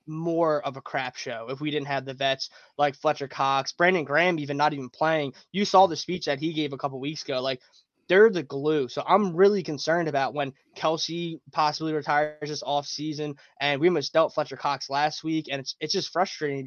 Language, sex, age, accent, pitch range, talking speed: English, male, 20-39, American, 140-165 Hz, 215 wpm